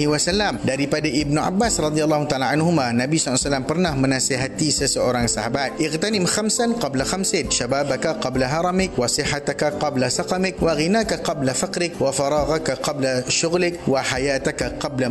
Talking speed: 125 wpm